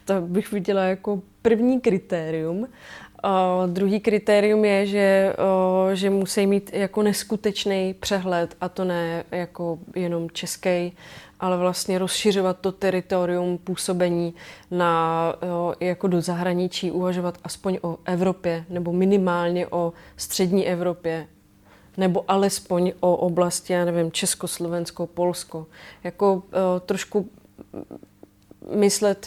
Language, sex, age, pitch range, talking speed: Czech, female, 20-39, 175-200 Hz, 110 wpm